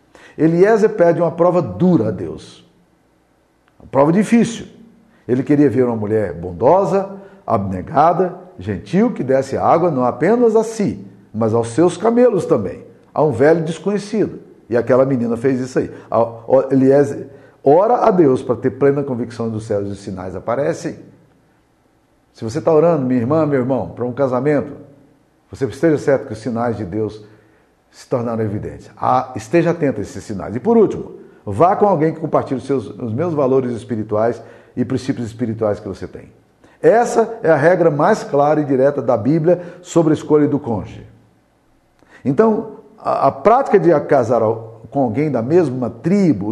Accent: Brazilian